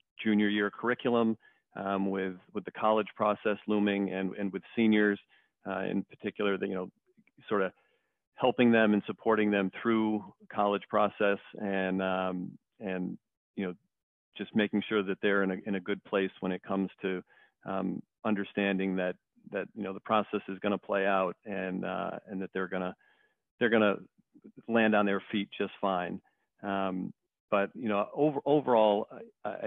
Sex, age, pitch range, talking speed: male, 40-59, 95-110 Hz, 175 wpm